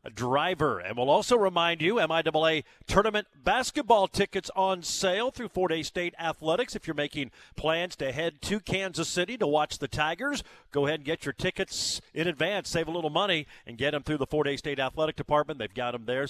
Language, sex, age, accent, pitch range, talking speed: English, male, 50-69, American, 140-190 Hz, 205 wpm